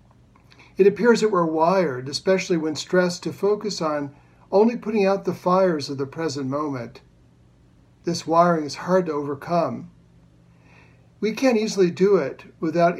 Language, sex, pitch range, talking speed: English, male, 135-185 Hz, 150 wpm